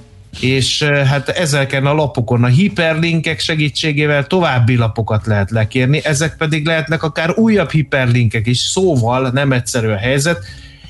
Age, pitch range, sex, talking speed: 30-49, 115-140 Hz, male, 125 wpm